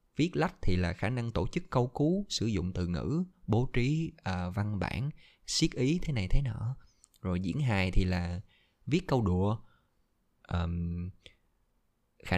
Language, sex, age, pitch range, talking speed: Vietnamese, male, 20-39, 90-115 Hz, 170 wpm